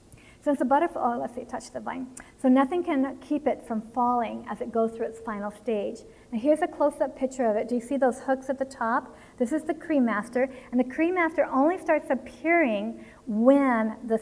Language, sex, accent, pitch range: English, female, American, 220-275 Hz